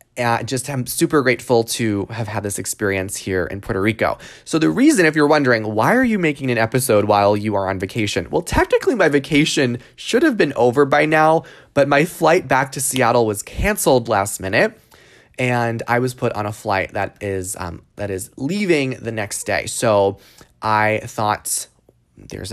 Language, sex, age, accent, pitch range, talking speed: English, male, 20-39, American, 105-140 Hz, 190 wpm